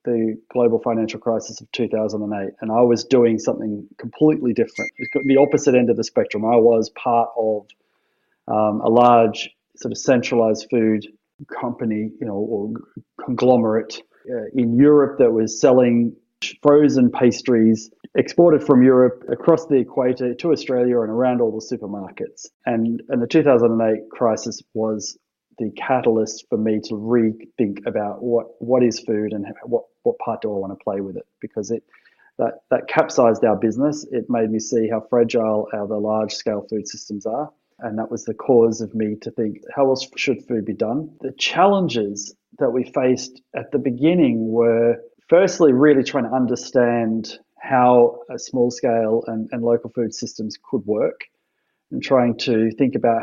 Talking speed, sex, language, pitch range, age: 170 wpm, male, English, 110-125 Hz, 30-49